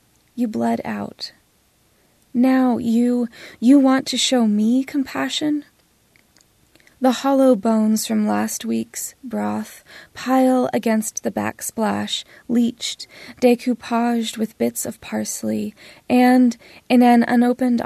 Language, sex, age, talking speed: English, female, 20-39, 110 wpm